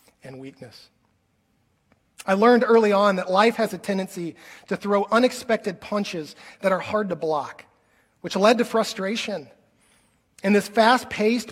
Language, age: English, 30-49